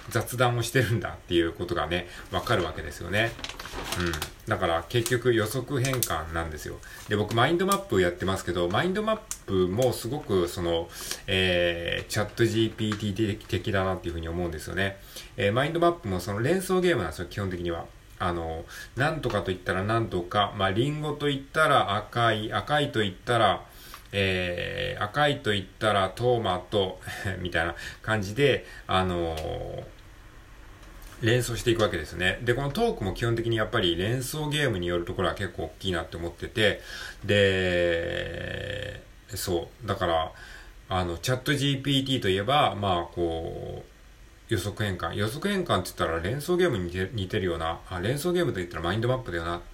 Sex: male